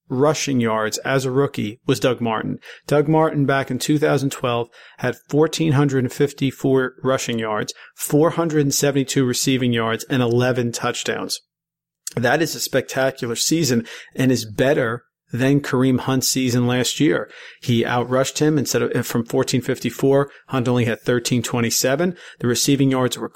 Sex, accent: male, American